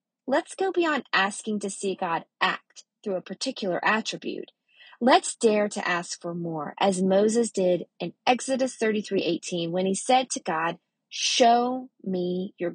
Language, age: English, 30-49